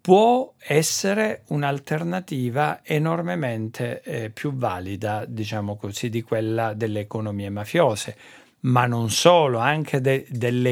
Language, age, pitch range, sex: Italian, 50-69, 110-145 Hz, male